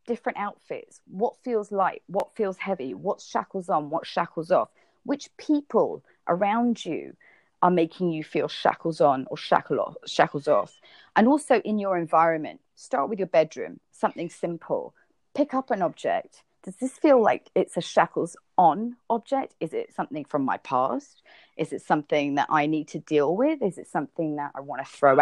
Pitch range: 165-240 Hz